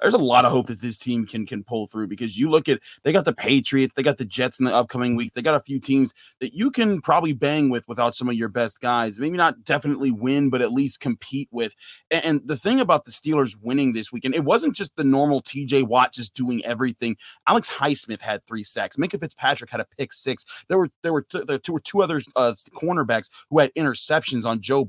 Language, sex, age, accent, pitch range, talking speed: English, male, 30-49, American, 120-140 Hz, 250 wpm